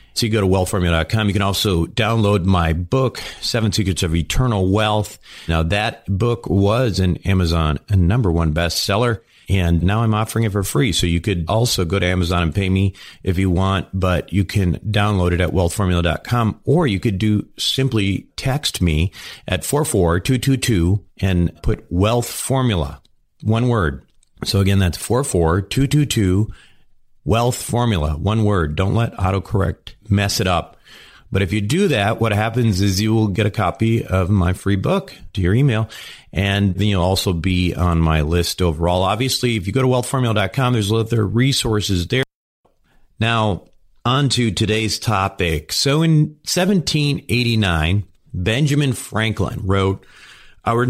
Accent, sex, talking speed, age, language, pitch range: American, male, 160 wpm, 40-59, English, 90-115 Hz